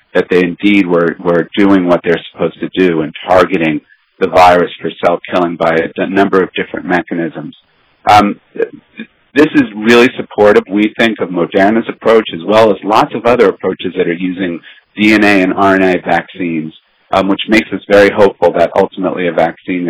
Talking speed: 180 wpm